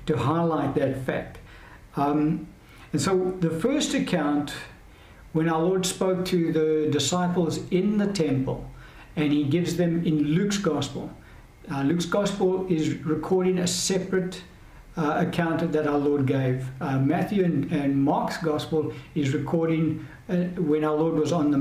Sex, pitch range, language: male, 145-180 Hz, English